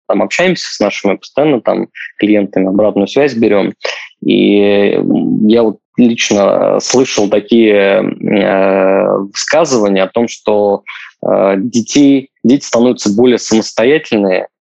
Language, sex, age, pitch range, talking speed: Russian, male, 20-39, 105-120 Hz, 105 wpm